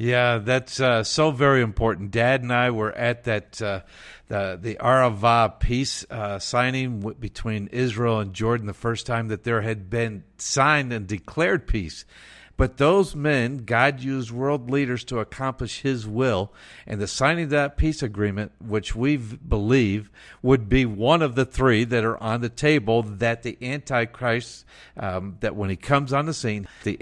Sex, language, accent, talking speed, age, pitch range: male, English, American, 175 wpm, 50-69, 110-135 Hz